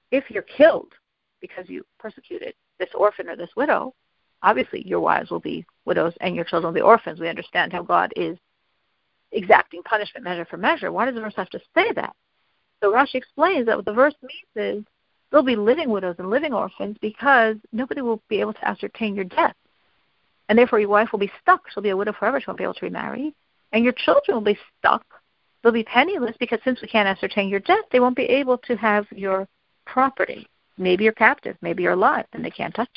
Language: English